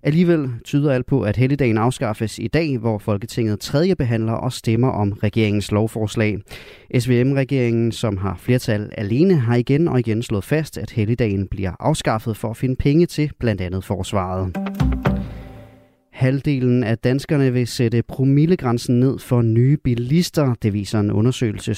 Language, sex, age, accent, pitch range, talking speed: Danish, male, 30-49, native, 105-135 Hz, 150 wpm